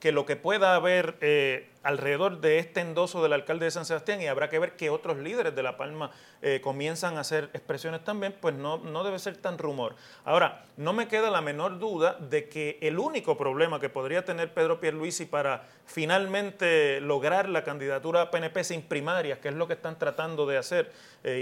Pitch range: 150-200 Hz